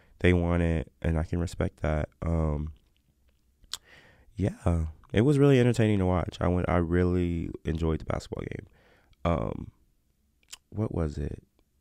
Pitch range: 75-95 Hz